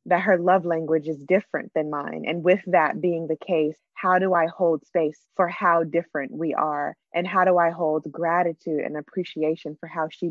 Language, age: English, 20-39